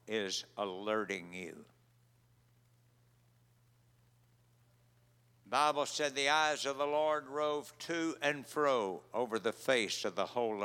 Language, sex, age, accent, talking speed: English, male, 60-79, American, 115 wpm